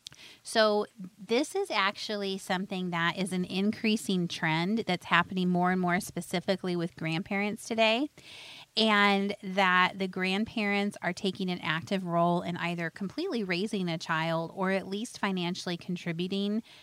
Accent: American